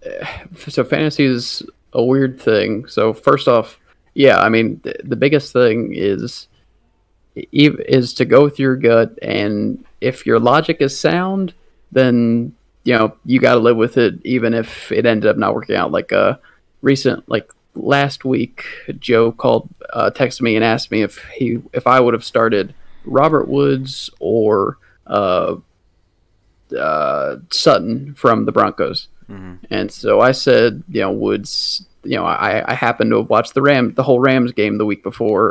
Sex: male